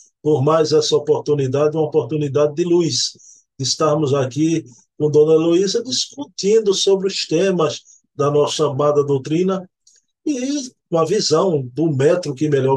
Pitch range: 150-195 Hz